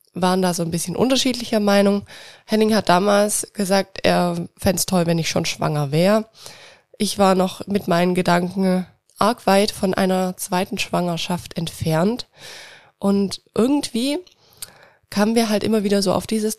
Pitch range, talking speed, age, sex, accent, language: 175-210 Hz, 155 wpm, 20-39, female, German, German